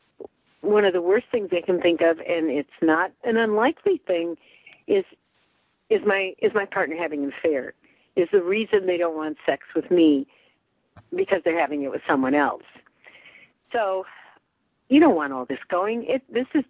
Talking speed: 180 wpm